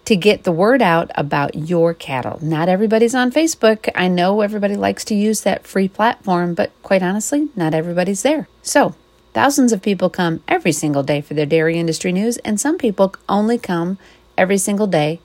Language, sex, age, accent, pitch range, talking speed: English, female, 40-59, American, 165-210 Hz, 190 wpm